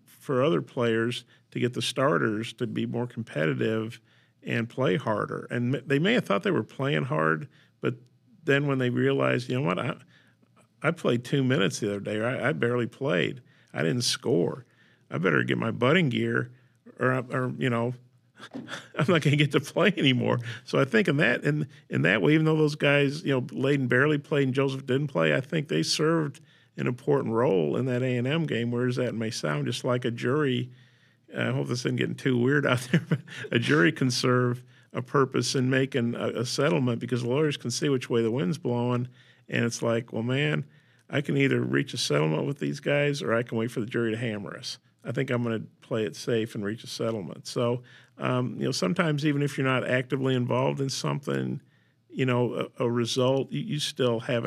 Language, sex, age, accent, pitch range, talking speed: English, male, 50-69, American, 120-140 Hz, 210 wpm